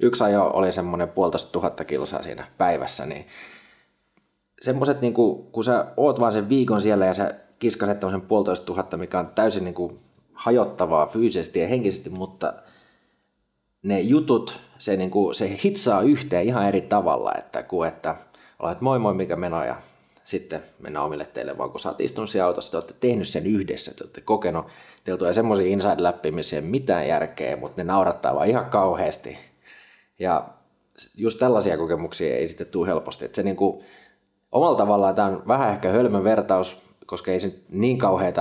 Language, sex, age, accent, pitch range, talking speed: Finnish, male, 20-39, native, 95-115 Hz, 160 wpm